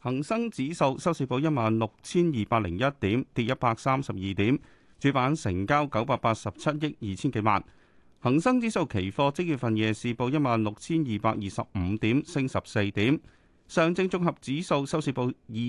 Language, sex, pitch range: Chinese, male, 110-150 Hz